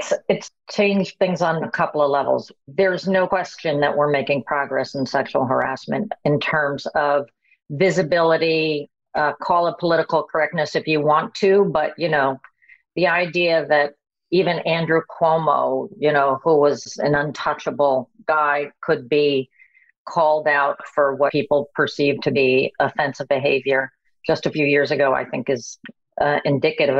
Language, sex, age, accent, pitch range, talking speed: English, female, 50-69, American, 140-175 Hz, 155 wpm